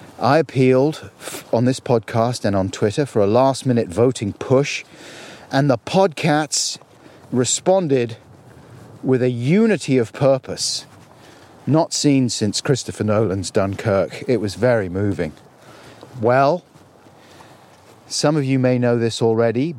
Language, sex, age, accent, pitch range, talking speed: English, male, 40-59, British, 115-145 Hz, 120 wpm